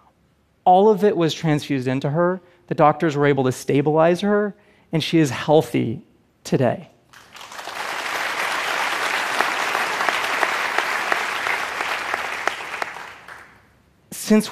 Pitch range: 130-175 Hz